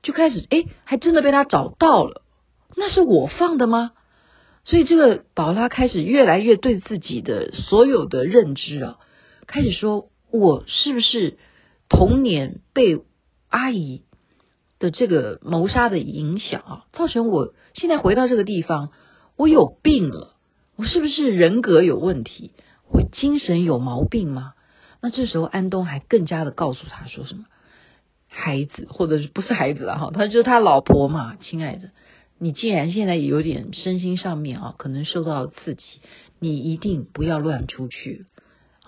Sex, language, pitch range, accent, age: female, Chinese, 160-245 Hz, native, 50-69